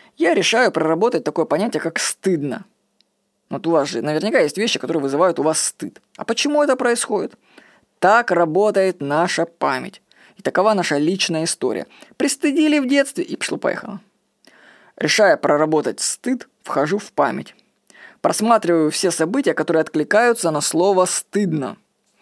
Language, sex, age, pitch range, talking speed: Russian, female, 20-39, 160-225 Hz, 140 wpm